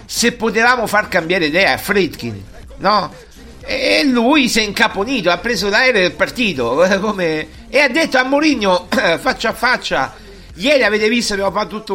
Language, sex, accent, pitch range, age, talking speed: Italian, male, native, 155-210 Hz, 50-69, 160 wpm